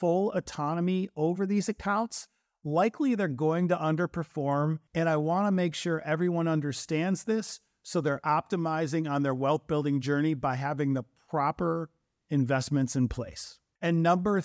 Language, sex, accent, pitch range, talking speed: English, male, American, 140-175 Hz, 145 wpm